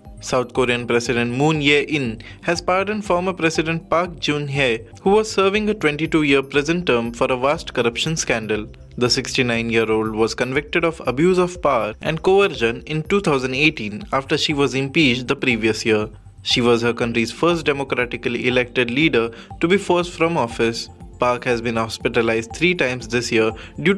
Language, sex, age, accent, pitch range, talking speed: English, male, 20-39, Indian, 115-160 Hz, 160 wpm